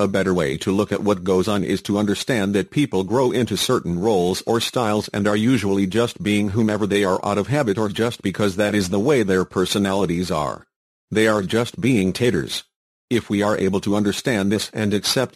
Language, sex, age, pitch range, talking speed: English, male, 50-69, 100-115 Hz, 215 wpm